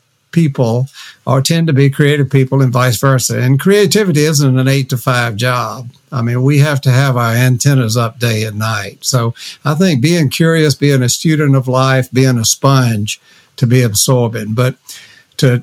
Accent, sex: American, male